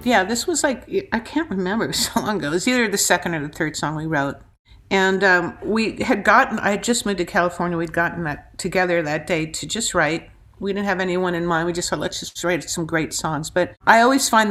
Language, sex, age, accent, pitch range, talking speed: English, female, 50-69, American, 160-195 Hz, 255 wpm